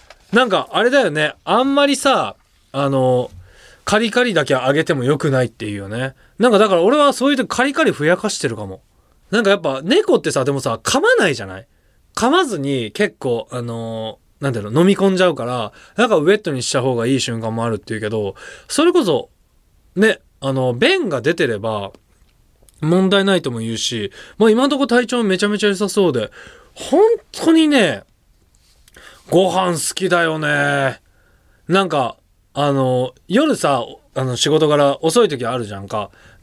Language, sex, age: Japanese, male, 20-39